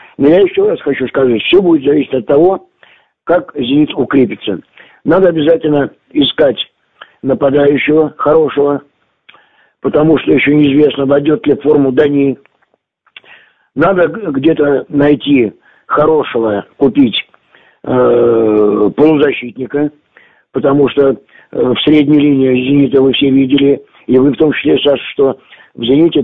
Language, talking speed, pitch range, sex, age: Russian, 120 wpm, 130-155 Hz, male, 50-69